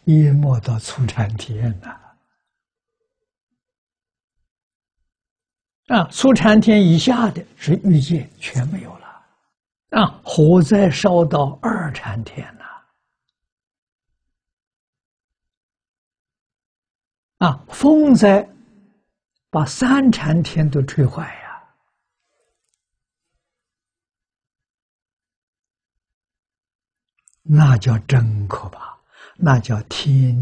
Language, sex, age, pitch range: Chinese, male, 60-79, 115-170 Hz